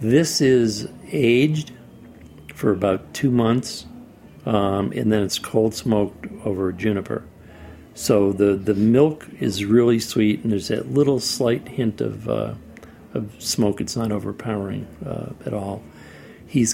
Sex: male